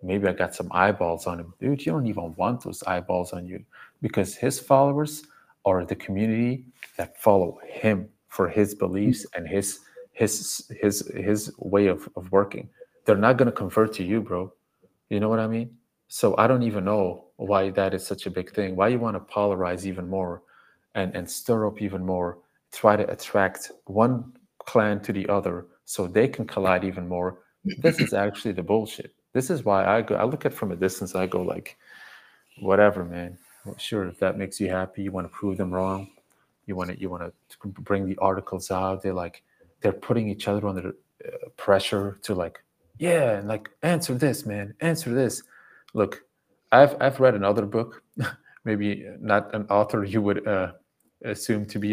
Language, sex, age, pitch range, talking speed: German, male, 30-49, 95-110 Hz, 195 wpm